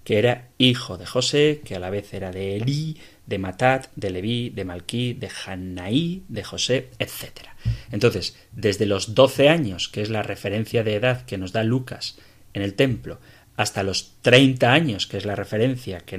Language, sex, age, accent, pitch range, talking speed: Spanish, male, 30-49, Spanish, 100-125 Hz, 185 wpm